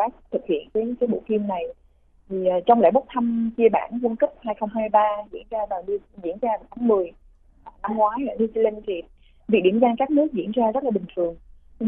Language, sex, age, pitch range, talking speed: Vietnamese, female, 20-39, 200-240 Hz, 210 wpm